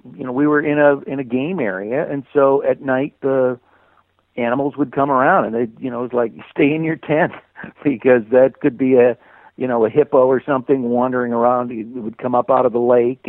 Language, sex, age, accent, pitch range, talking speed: English, male, 60-79, American, 115-140 Hz, 230 wpm